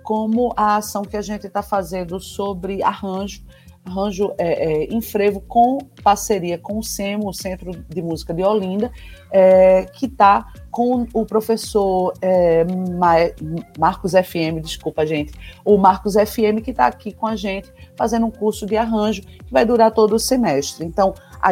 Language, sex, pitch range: Portuguese, female, 185-215 Hz